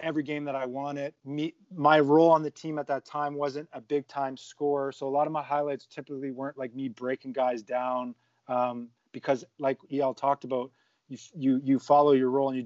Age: 30-49